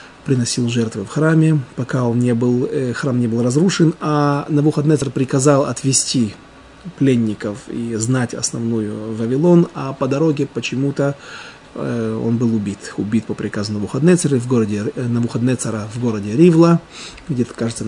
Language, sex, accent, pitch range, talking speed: Russian, male, native, 115-160 Hz, 130 wpm